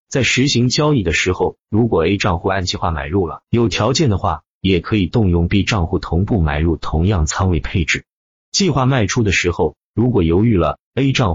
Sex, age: male, 30-49